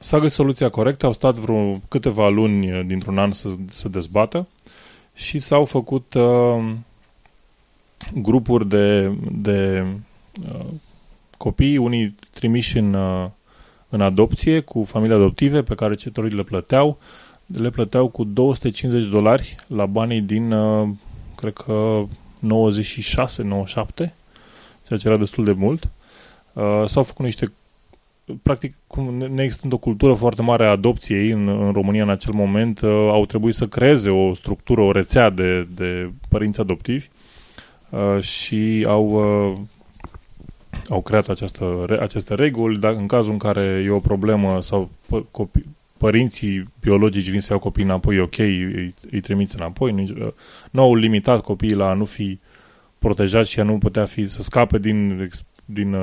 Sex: male